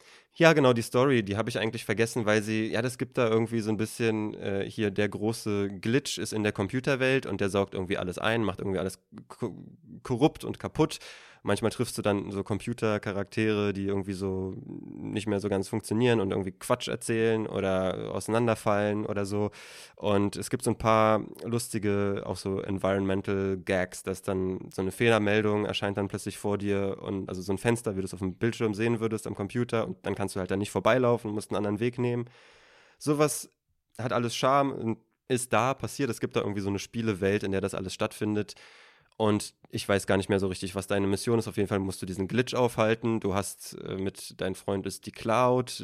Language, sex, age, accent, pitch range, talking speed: German, male, 20-39, German, 100-115 Hz, 210 wpm